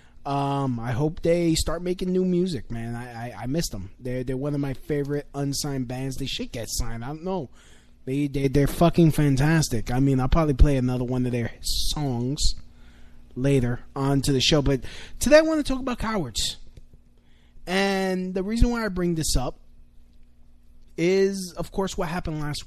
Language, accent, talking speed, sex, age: English, American, 185 wpm, male, 20-39